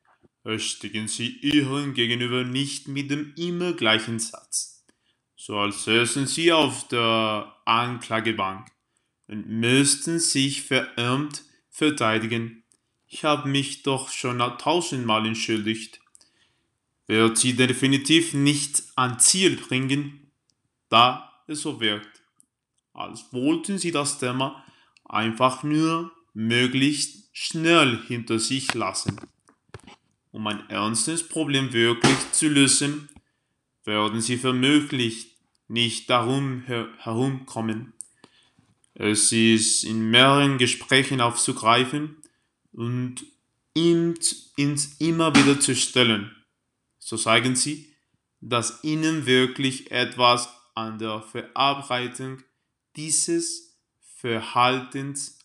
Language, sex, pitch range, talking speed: German, male, 115-145 Hz, 100 wpm